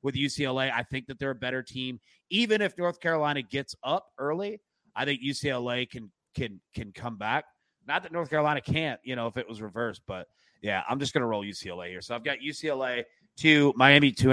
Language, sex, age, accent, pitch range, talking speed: English, male, 30-49, American, 120-155 Hz, 210 wpm